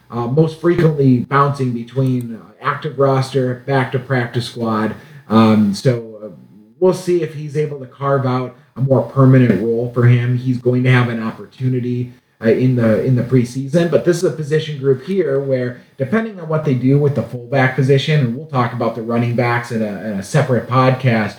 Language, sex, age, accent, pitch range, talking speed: English, male, 30-49, American, 120-140 Hz, 195 wpm